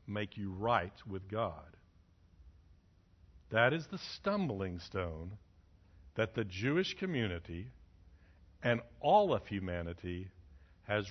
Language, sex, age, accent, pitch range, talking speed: English, male, 60-79, American, 85-140 Hz, 105 wpm